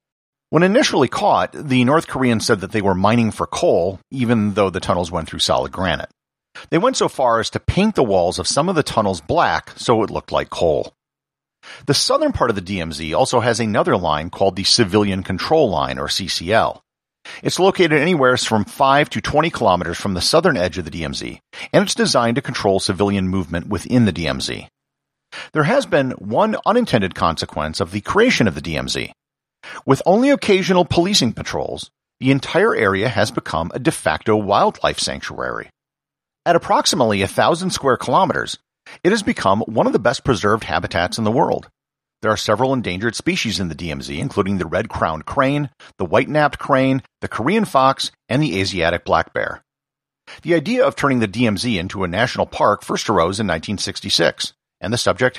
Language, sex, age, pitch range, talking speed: English, male, 50-69, 95-140 Hz, 180 wpm